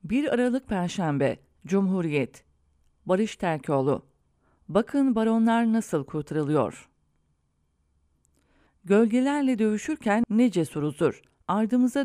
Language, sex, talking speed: English, female, 75 wpm